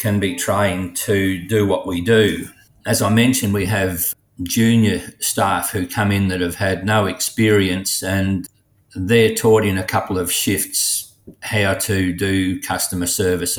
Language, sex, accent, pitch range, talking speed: English, male, Australian, 95-110 Hz, 160 wpm